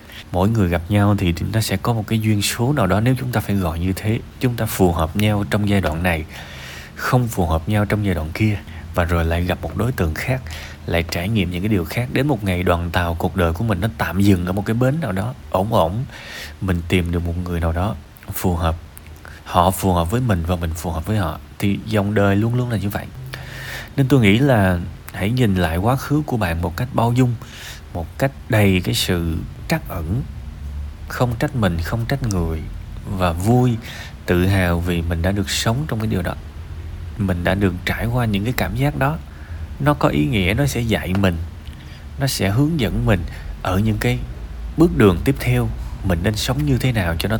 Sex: male